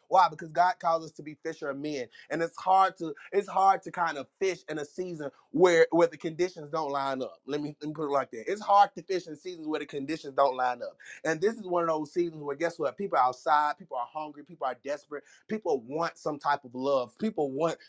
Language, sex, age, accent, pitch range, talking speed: English, male, 30-49, American, 140-165 Hz, 260 wpm